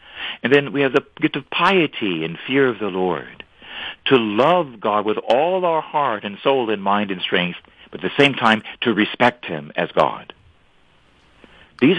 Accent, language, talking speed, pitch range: American, English, 185 wpm, 110-150 Hz